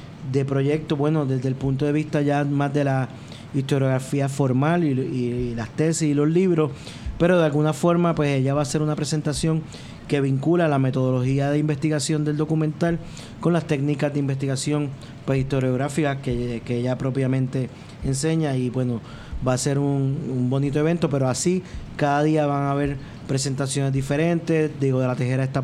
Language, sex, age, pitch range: Spanish, male, 30-49, 130-155 Hz